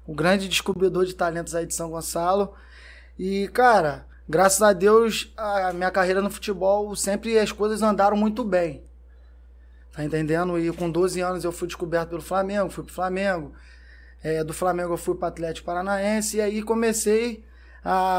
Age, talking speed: 20-39, 165 wpm